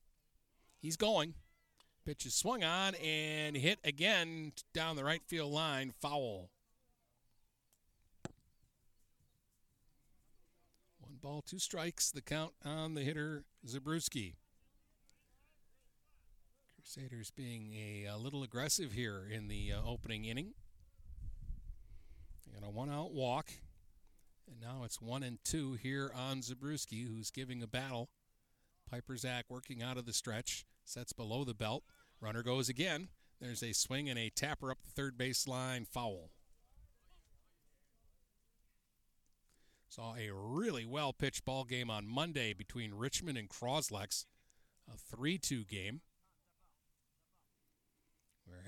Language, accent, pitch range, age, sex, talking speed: English, American, 105-145 Hz, 50-69, male, 115 wpm